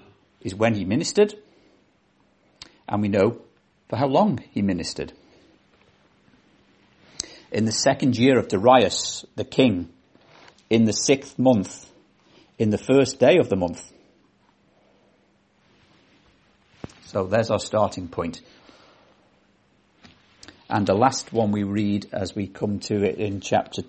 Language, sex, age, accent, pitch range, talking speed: English, male, 50-69, British, 100-125 Hz, 125 wpm